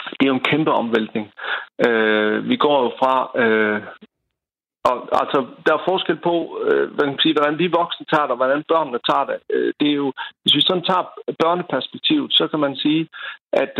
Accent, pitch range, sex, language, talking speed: native, 125-165 Hz, male, Danish, 195 wpm